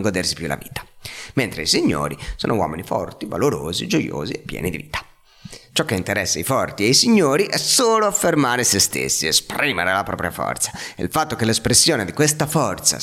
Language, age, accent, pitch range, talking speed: Italian, 30-49, native, 95-150 Hz, 190 wpm